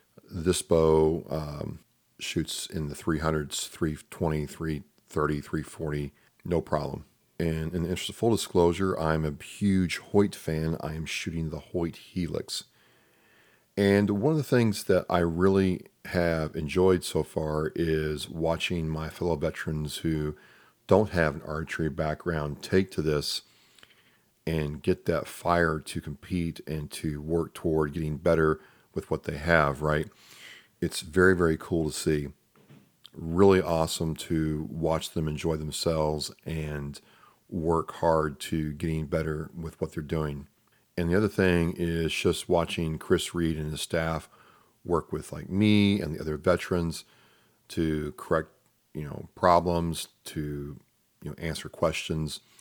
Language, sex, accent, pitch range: English, male, American, 75-85 Hz